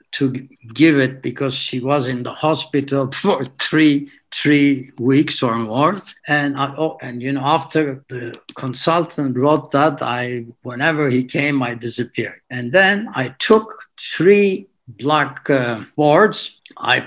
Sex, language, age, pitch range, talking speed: male, English, 60-79, 130-155 Hz, 140 wpm